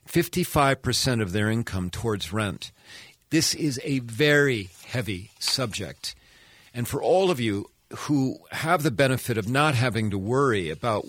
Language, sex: English, male